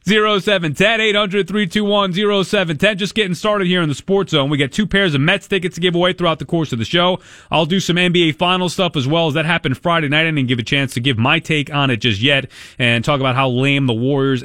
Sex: male